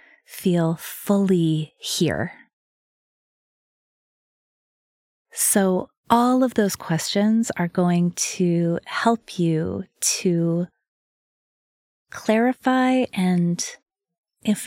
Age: 30-49